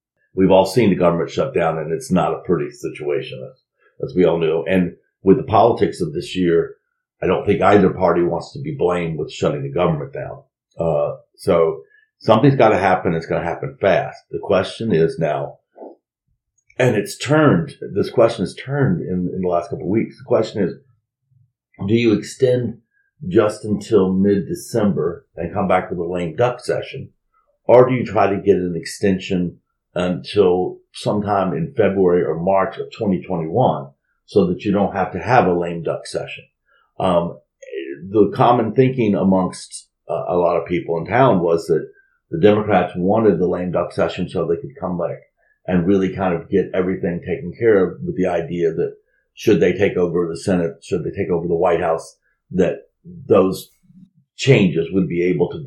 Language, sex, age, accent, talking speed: English, male, 50-69, American, 185 wpm